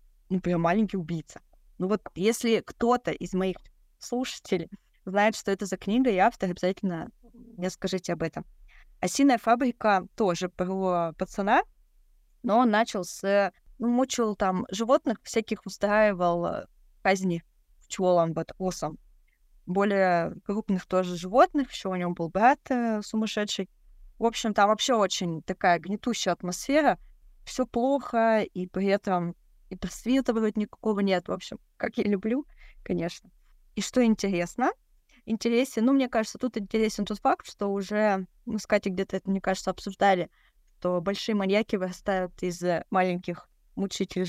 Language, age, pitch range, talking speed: Russian, 20-39, 180-225 Hz, 140 wpm